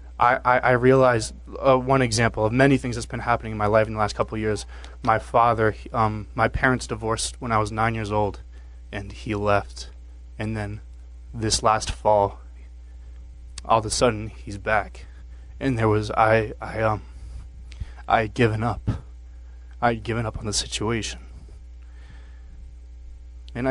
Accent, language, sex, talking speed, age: American, English, male, 165 wpm, 20-39